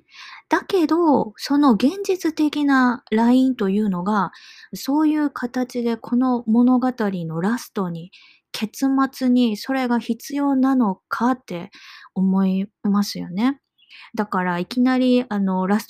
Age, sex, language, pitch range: 20-39, female, Japanese, 200-270 Hz